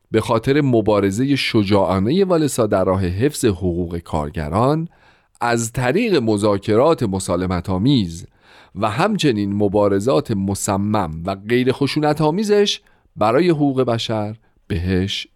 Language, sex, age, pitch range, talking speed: Persian, male, 40-59, 100-150 Hz, 100 wpm